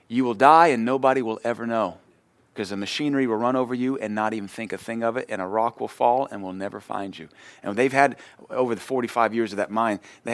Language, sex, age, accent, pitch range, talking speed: English, male, 30-49, American, 105-140 Hz, 255 wpm